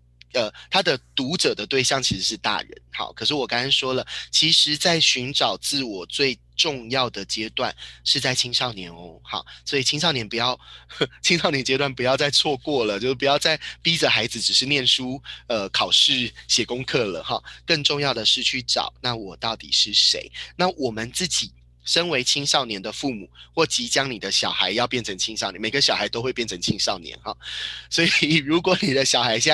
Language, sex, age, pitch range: Chinese, male, 20-39, 105-145 Hz